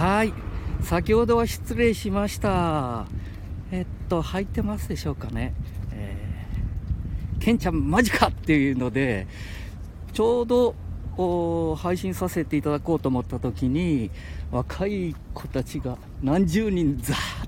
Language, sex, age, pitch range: Japanese, male, 50-69, 95-140 Hz